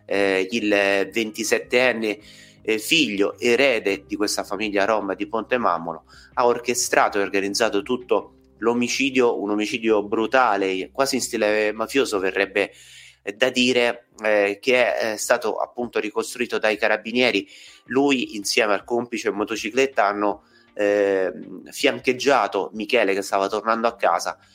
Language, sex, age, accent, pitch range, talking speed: Italian, male, 30-49, native, 100-120 Hz, 130 wpm